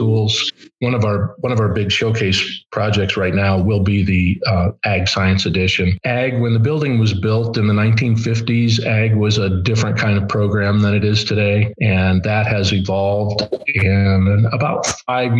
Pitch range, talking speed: 100-115 Hz, 175 wpm